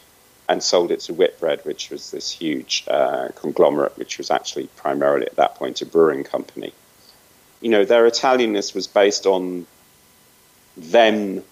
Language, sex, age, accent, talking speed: English, male, 40-59, British, 155 wpm